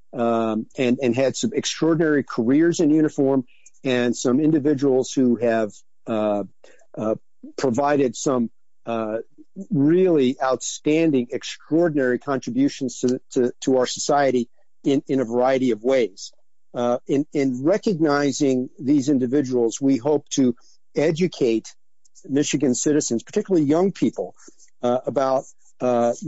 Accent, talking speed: American, 120 wpm